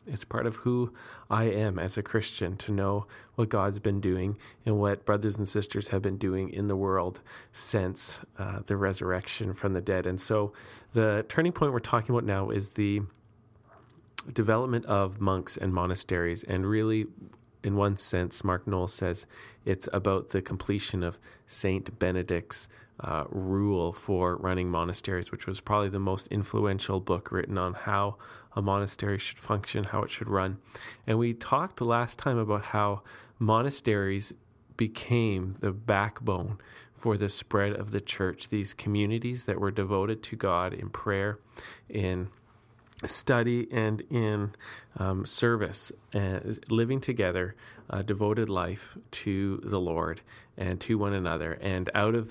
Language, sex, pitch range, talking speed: English, male, 95-110 Hz, 155 wpm